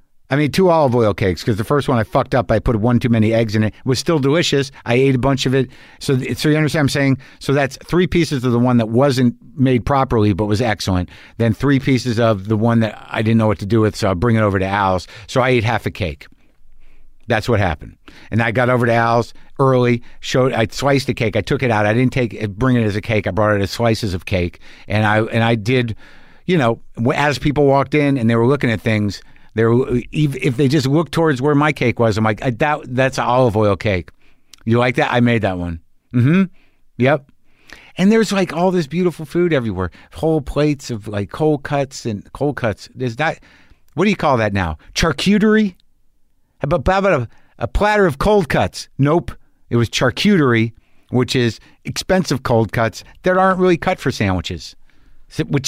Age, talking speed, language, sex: 50-69, 220 wpm, English, male